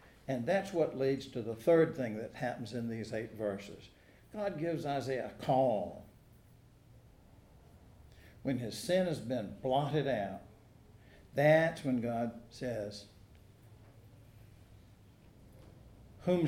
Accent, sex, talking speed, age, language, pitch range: American, male, 115 wpm, 60-79, English, 110-155 Hz